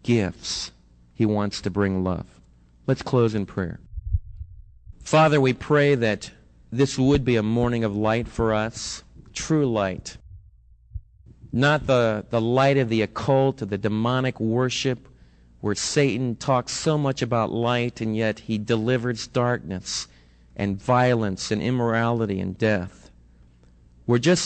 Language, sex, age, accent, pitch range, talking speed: English, male, 40-59, American, 100-140 Hz, 135 wpm